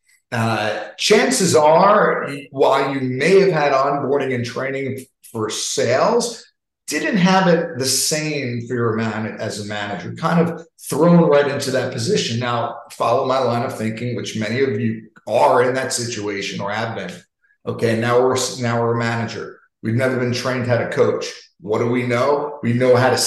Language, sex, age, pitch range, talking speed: English, male, 50-69, 115-135 Hz, 180 wpm